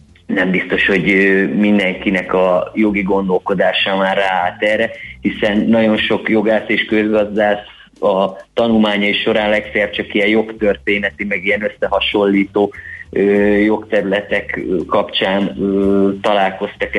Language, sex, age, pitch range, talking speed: Hungarian, male, 30-49, 95-110 Hz, 100 wpm